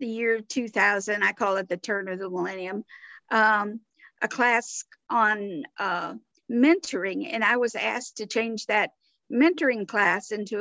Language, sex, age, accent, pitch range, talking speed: English, female, 50-69, American, 210-255 Hz, 155 wpm